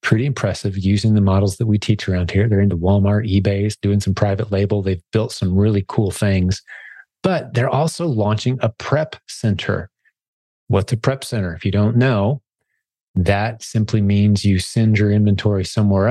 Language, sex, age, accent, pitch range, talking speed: English, male, 30-49, American, 100-115 Hz, 175 wpm